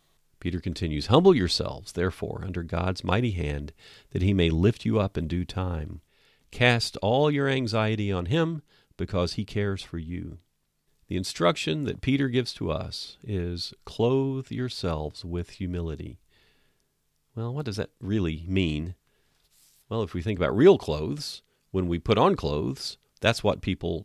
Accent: American